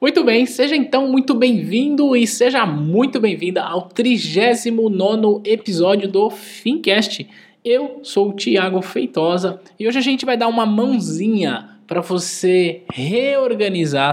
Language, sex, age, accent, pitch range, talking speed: Portuguese, male, 20-39, Brazilian, 140-220 Hz, 130 wpm